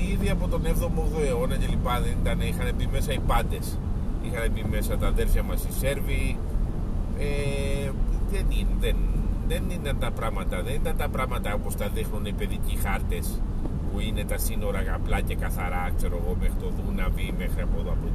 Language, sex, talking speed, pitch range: Greek, male, 175 wpm, 80-95 Hz